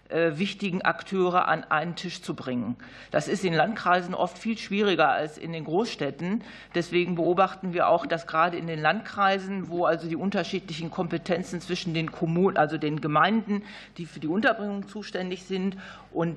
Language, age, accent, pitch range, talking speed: German, 50-69, German, 160-185 Hz, 165 wpm